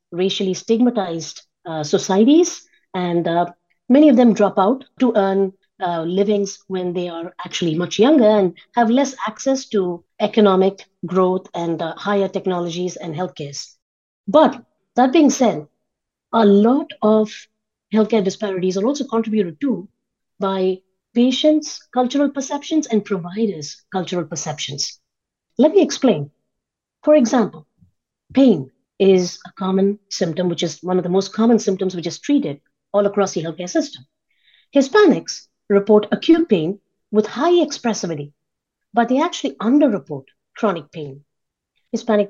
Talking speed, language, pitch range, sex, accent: 135 wpm, English, 180-240 Hz, female, Indian